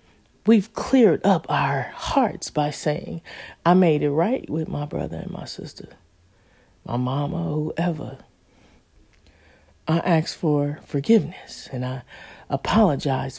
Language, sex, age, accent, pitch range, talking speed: English, female, 40-59, American, 105-165 Hz, 120 wpm